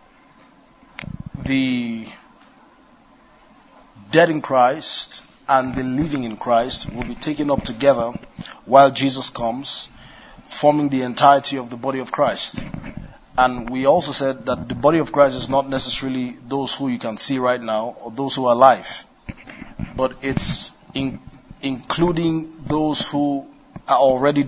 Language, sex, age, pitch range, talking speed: English, male, 30-49, 120-140 Hz, 135 wpm